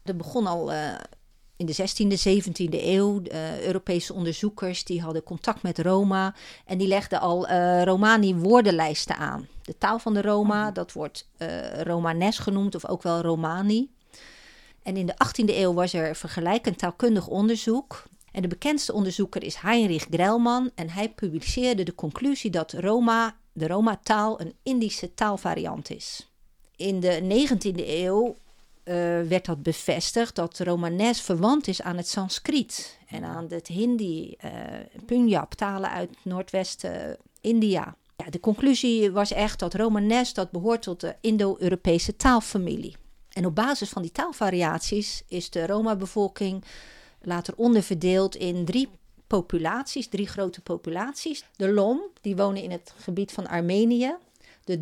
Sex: female